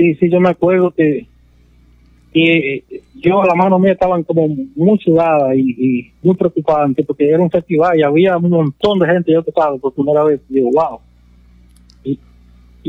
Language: English